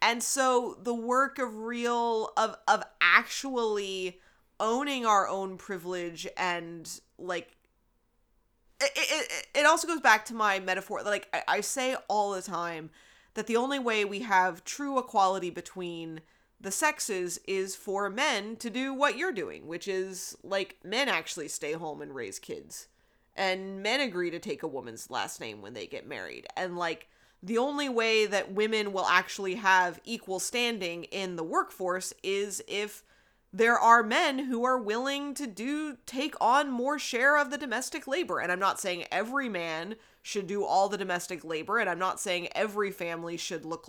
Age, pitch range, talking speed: 30-49, 185-245 Hz, 170 wpm